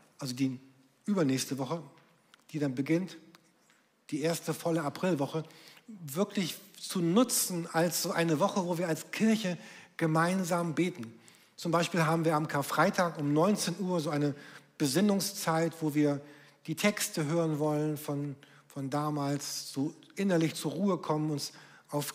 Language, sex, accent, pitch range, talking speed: German, male, German, 150-180 Hz, 140 wpm